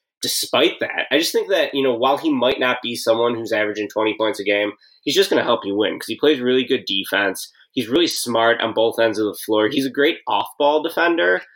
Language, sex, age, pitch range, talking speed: English, male, 20-39, 110-140 Hz, 245 wpm